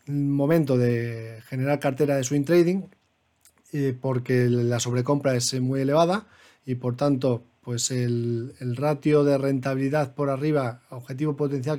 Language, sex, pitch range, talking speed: Spanish, male, 130-155 Hz, 130 wpm